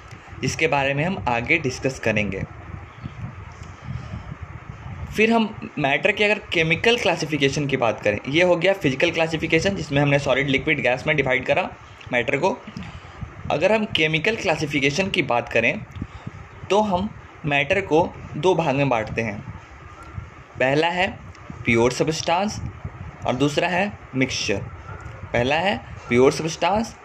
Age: 20-39